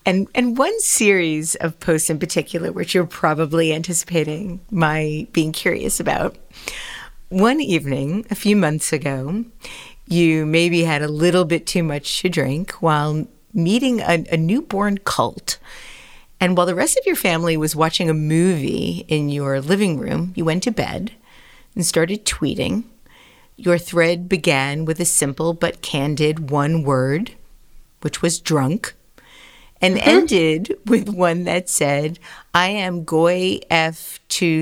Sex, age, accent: female, 40-59, American